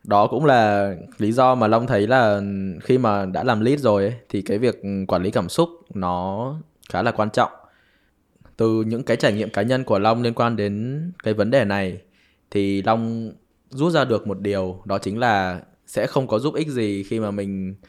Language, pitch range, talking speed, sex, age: Vietnamese, 95-120 Hz, 210 wpm, male, 10-29